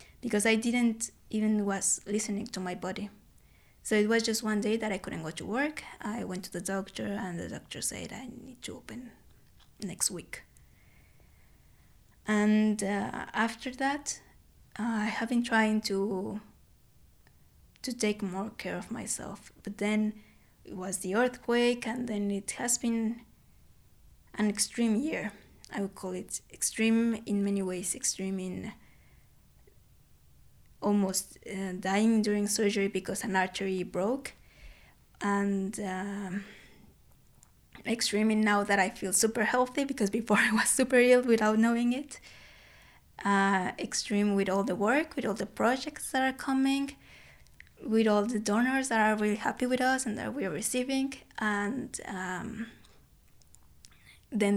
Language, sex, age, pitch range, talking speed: English, female, 20-39, 200-240 Hz, 145 wpm